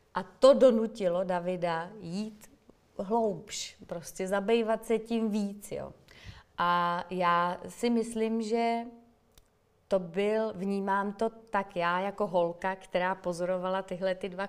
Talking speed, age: 115 wpm, 30-49